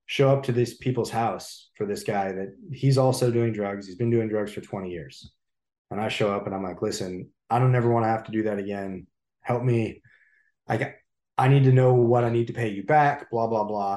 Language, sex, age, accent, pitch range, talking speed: English, male, 20-39, American, 105-130 Hz, 245 wpm